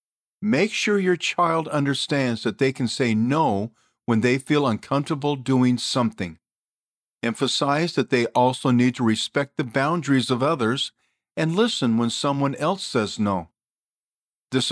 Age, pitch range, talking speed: 50-69, 120-165 Hz, 145 wpm